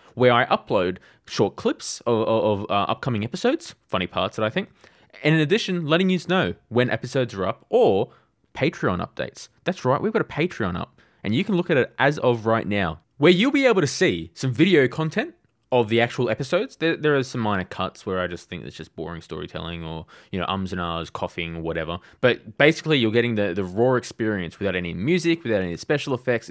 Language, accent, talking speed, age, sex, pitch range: English, Australian, 215 wpm, 20-39, male, 90-130 Hz